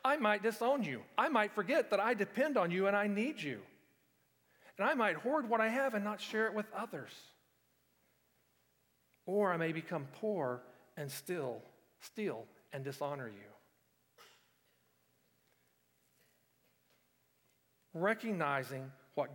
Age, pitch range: 50-69, 135-195 Hz